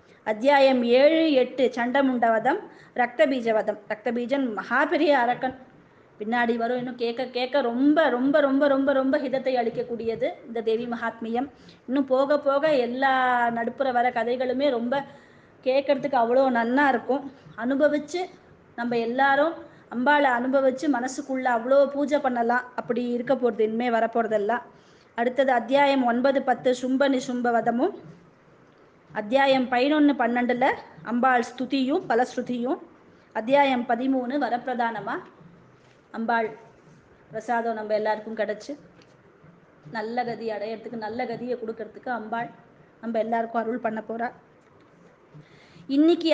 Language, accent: Tamil, native